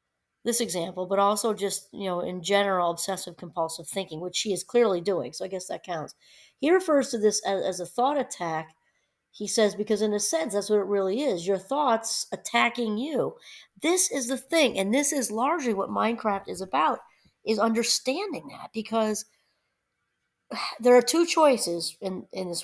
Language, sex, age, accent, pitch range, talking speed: English, female, 40-59, American, 195-255 Hz, 185 wpm